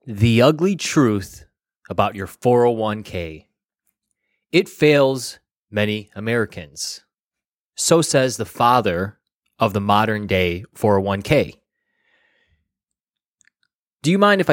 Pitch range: 105-145 Hz